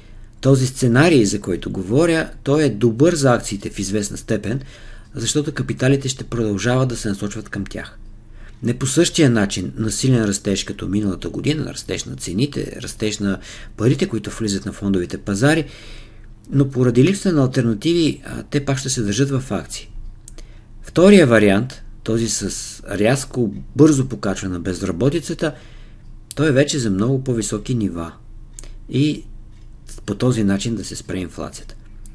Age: 50-69